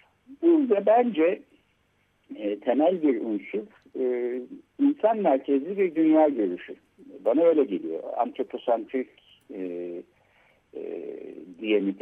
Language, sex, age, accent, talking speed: Turkish, male, 60-79, native, 100 wpm